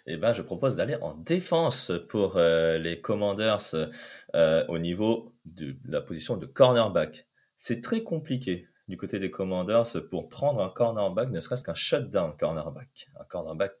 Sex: male